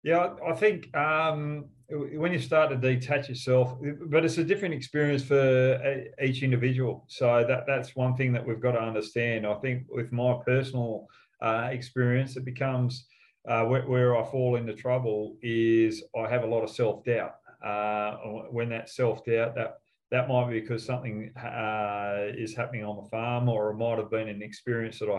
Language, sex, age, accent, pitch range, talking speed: English, male, 40-59, Australian, 110-130 Hz, 180 wpm